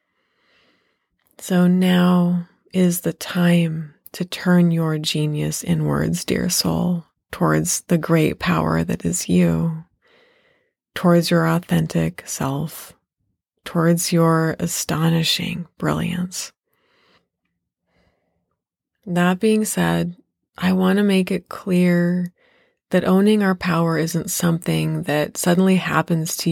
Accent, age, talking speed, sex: American, 30-49, 105 wpm, female